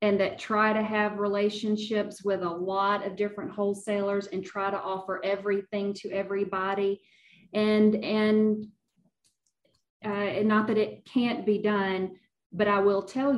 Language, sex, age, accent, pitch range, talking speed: English, female, 40-59, American, 180-205 Hz, 150 wpm